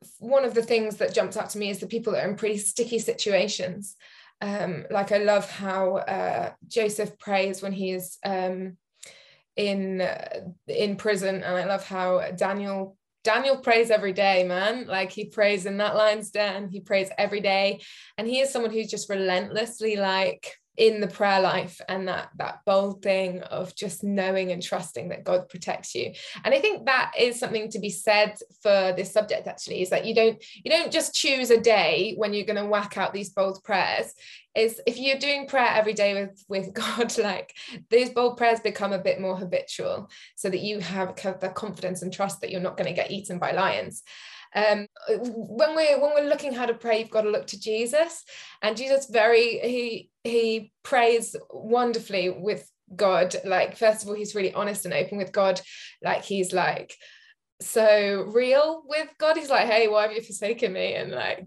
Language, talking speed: English, 195 wpm